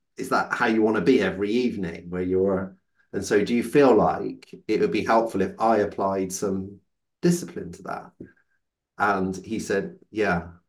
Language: English